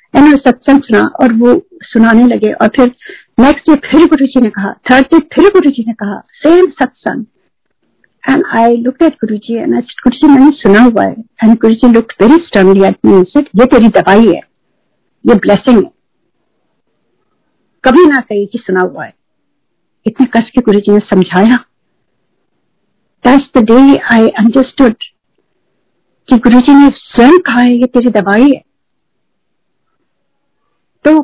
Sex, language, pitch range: female, Hindi, 225-280 Hz